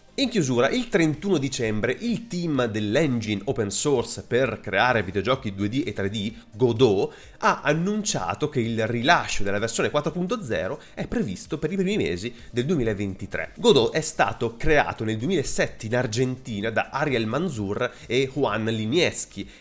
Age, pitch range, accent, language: 30-49, 110-160 Hz, native, Italian